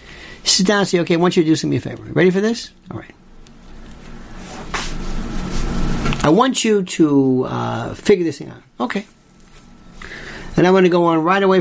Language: English